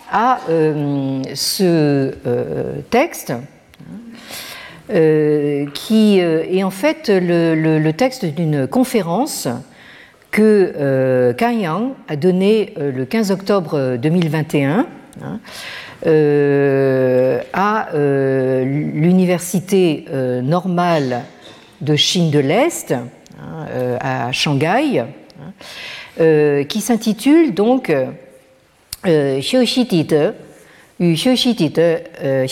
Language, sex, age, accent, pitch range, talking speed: French, female, 50-69, French, 145-215 Hz, 80 wpm